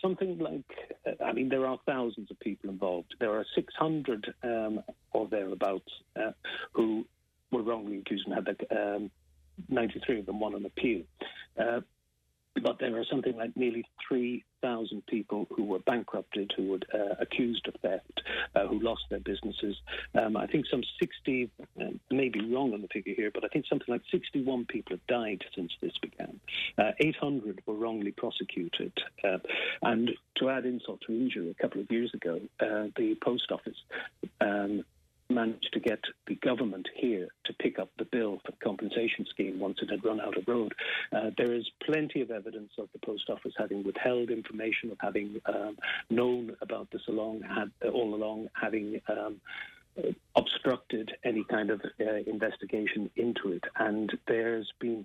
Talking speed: 175 wpm